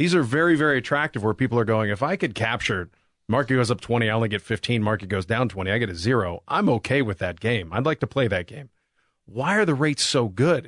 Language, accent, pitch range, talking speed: English, American, 105-140 Hz, 260 wpm